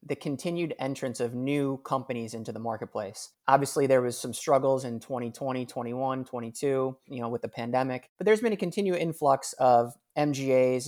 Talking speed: 170 wpm